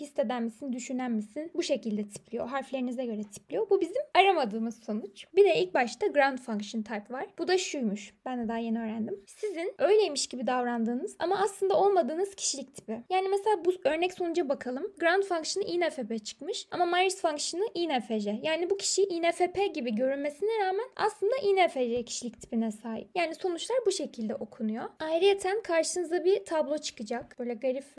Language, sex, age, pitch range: Turkish, female, 10-29, 240-345 Hz